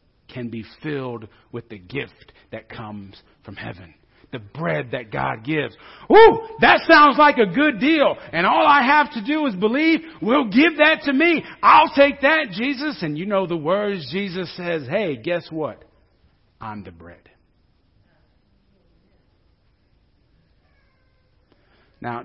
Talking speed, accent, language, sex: 145 wpm, American, English, male